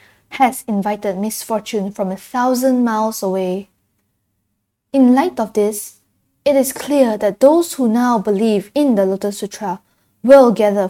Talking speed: 145 wpm